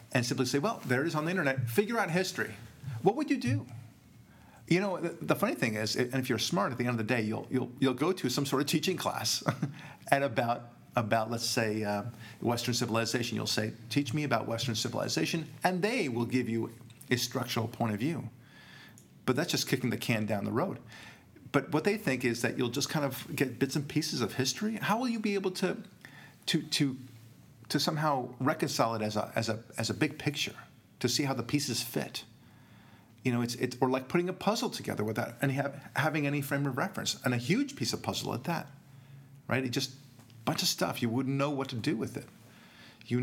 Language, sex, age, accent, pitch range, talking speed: English, male, 50-69, American, 115-150 Hz, 225 wpm